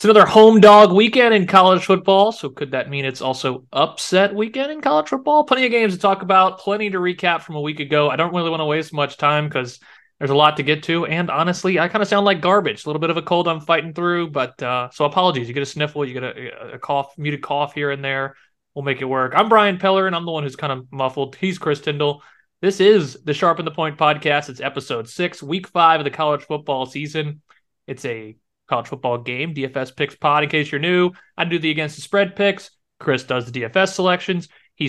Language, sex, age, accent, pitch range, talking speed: English, male, 30-49, American, 145-185 Hz, 245 wpm